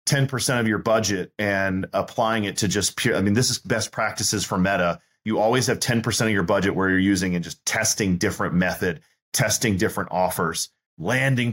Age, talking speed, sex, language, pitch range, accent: 30-49, 185 wpm, male, English, 100-120 Hz, American